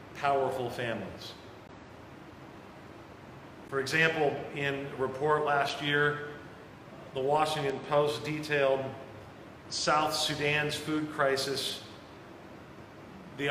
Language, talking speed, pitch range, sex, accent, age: English, 80 wpm, 135-180 Hz, male, American, 40-59